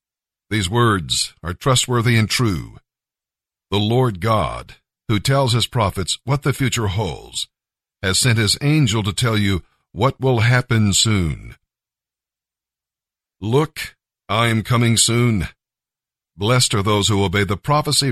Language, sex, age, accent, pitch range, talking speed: English, male, 60-79, American, 95-120 Hz, 135 wpm